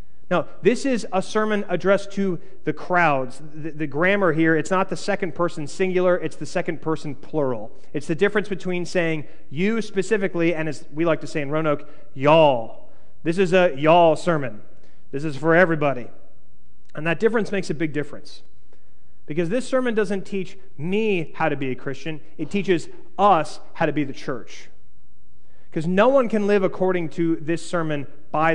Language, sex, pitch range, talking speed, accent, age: English, male, 150-195 Hz, 180 wpm, American, 30-49